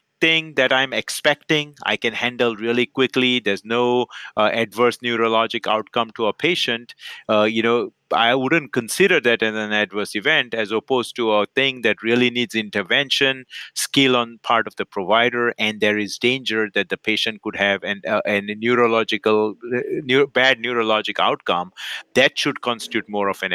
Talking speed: 175 wpm